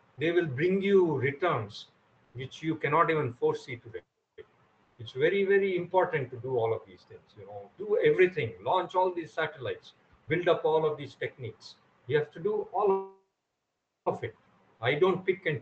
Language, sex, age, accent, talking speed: English, male, 50-69, Indian, 175 wpm